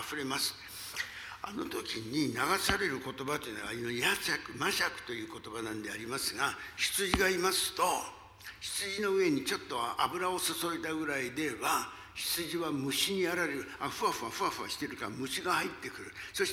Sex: male